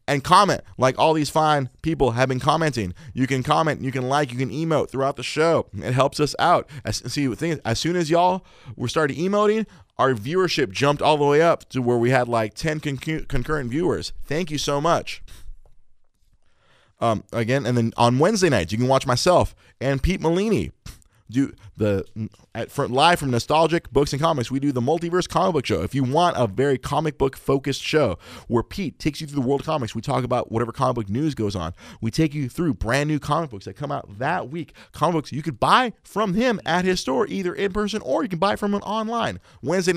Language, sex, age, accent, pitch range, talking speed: English, male, 30-49, American, 120-165 Hz, 225 wpm